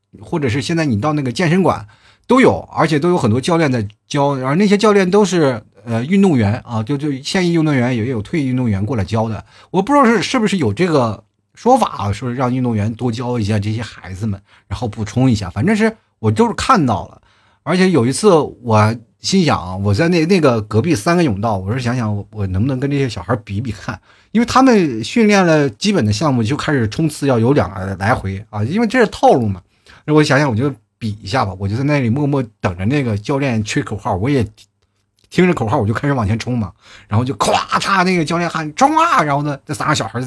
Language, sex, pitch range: Chinese, male, 105-155 Hz